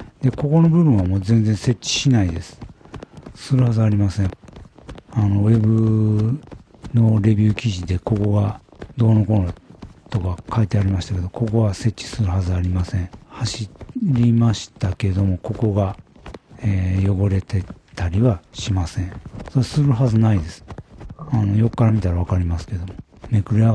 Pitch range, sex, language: 95-120 Hz, male, Japanese